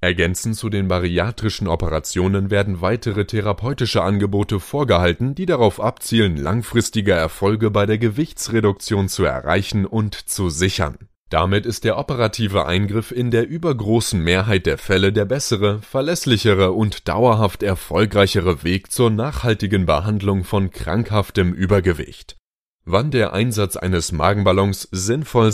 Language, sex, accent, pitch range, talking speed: German, male, German, 95-115 Hz, 125 wpm